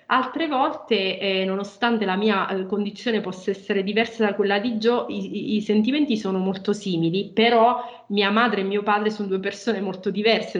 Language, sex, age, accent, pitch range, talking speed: Italian, female, 20-39, native, 200-230 Hz, 180 wpm